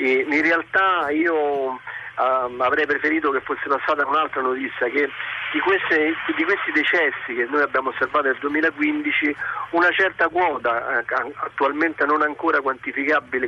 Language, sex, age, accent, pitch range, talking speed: Italian, male, 40-59, native, 125-165 Hz, 125 wpm